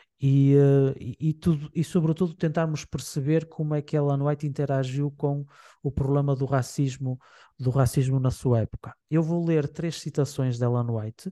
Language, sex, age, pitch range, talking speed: Portuguese, male, 20-39, 135-155 Hz, 170 wpm